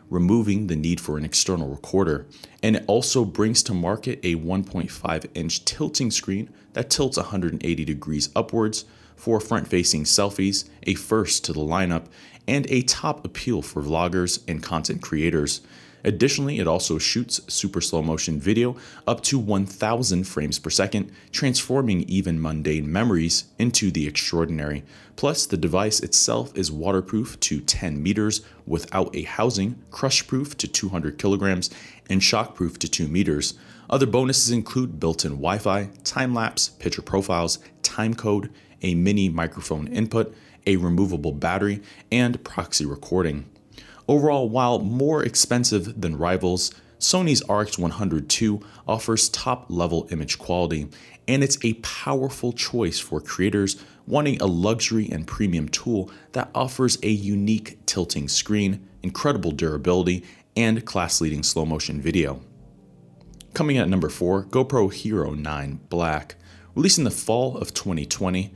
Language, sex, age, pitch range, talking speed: English, male, 30-49, 85-115 Hz, 140 wpm